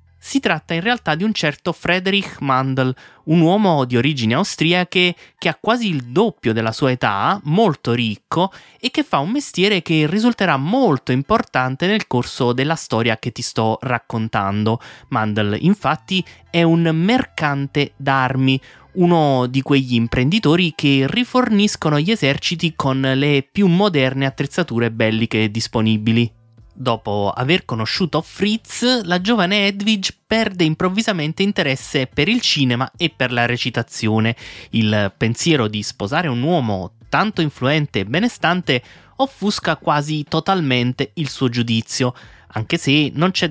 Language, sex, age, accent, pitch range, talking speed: Italian, male, 20-39, native, 120-180 Hz, 135 wpm